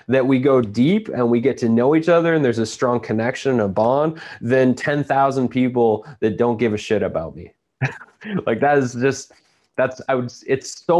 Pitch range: 110-135 Hz